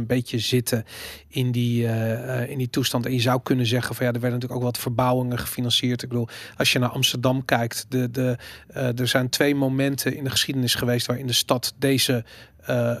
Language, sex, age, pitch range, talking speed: Dutch, male, 40-59, 125-145 Hz, 215 wpm